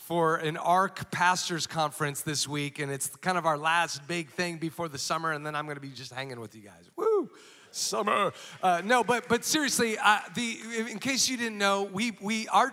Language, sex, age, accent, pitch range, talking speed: English, male, 30-49, American, 160-205 Hz, 210 wpm